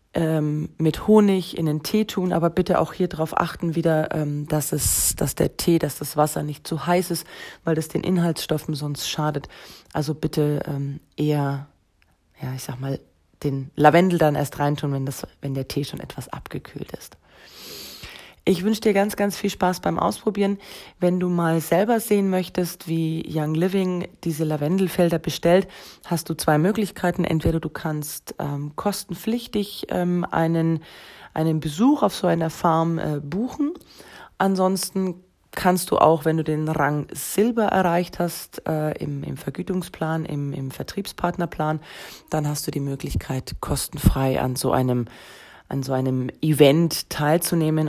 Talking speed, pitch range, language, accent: 155 wpm, 145-175 Hz, German, German